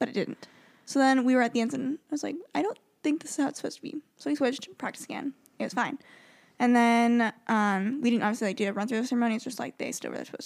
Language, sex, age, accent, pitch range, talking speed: English, female, 10-29, American, 215-265 Hz, 310 wpm